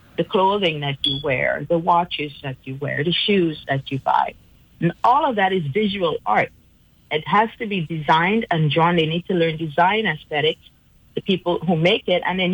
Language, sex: English, female